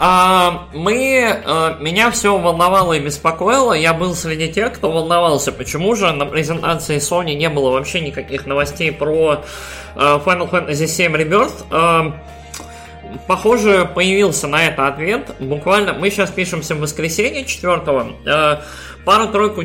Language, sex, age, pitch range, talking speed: Russian, male, 20-39, 145-185 Hz, 120 wpm